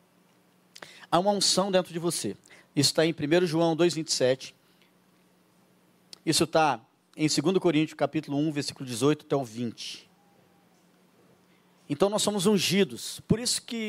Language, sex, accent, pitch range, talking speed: Portuguese, male, Brazilian, 145-195 Hz, 135 wpm